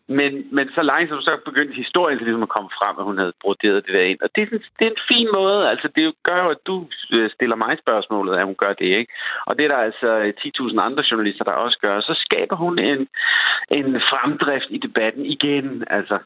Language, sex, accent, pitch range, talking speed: Danish, male, native, 110-175 Hz, 235 wpm